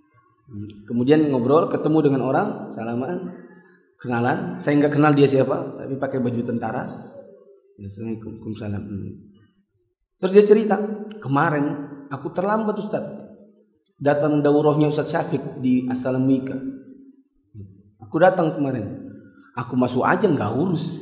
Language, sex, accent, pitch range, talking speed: Indonesian, male, native, 135-210 Hz, 110 wpm